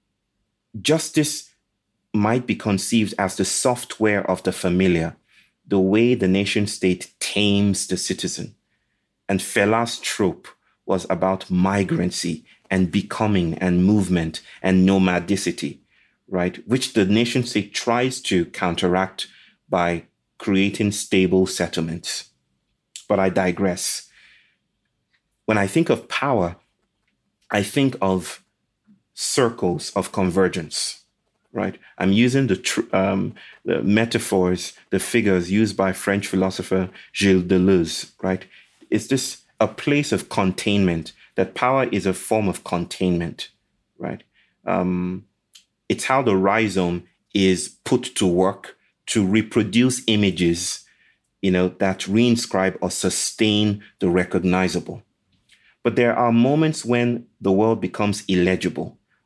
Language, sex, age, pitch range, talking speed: English, male, 30-49, 95-110 Hz, 115 wpm